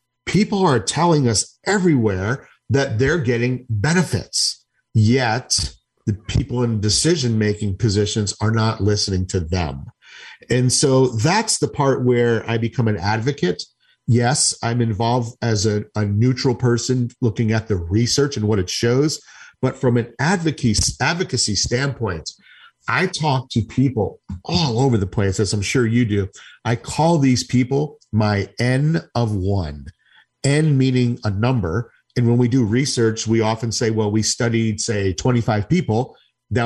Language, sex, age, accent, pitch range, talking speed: English, male, 50-69, American, 110-135 Hz, 150 wpm